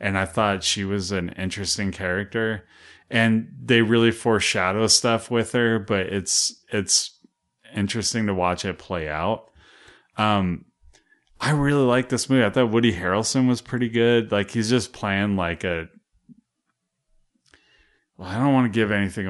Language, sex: English, male